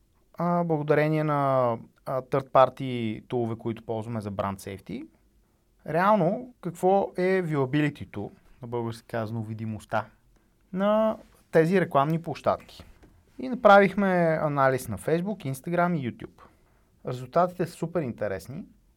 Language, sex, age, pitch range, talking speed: Bulgarian, male, 30-49, 115-165 Hz, 110 wpm